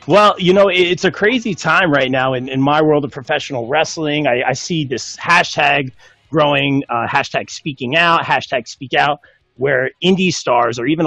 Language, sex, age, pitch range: English, male, 30-49, 130-160 Hz